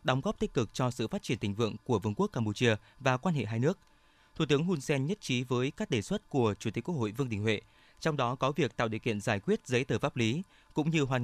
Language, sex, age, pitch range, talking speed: Vietnamese, male, 20-39, 120-150 Hz, 285 wpm